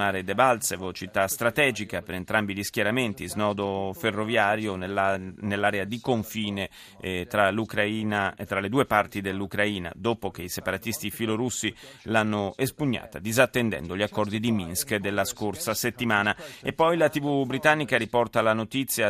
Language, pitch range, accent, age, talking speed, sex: Italian, 100-115 Hz, native, 30-49, 140 wpm, male